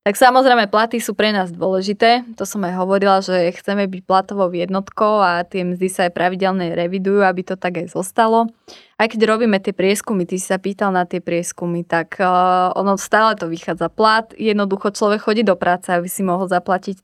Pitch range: 180-210 Hz